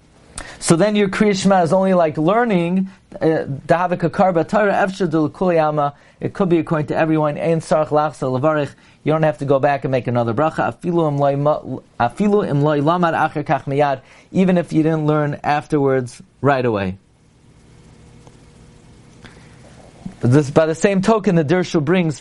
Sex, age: male, 40-59